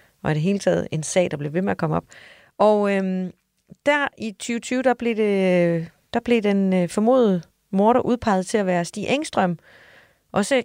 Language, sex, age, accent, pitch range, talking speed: Danish, female, 30-49, native, 160-215 Hz, 195 wpm